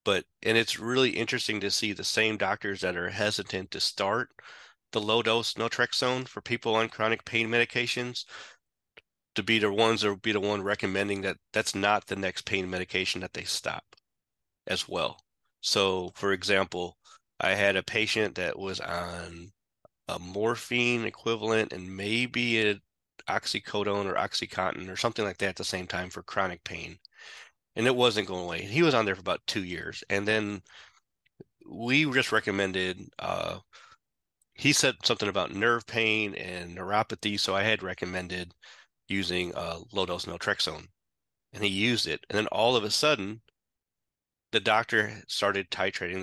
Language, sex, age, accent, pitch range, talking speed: English, male, 30-49, American, 95-115 Hz, 160 wpm